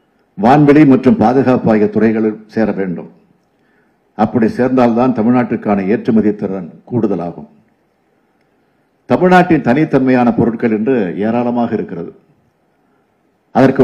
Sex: male